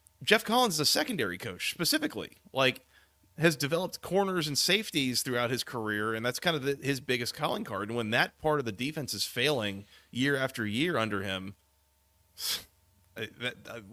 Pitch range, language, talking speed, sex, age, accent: 105-140 Hz, English, 175 wpm, male, 30-49, American